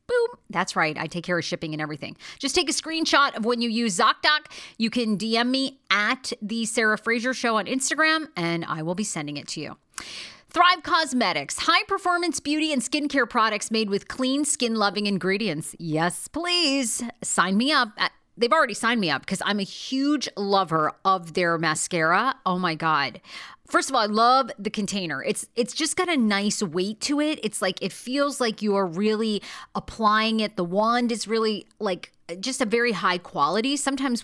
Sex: female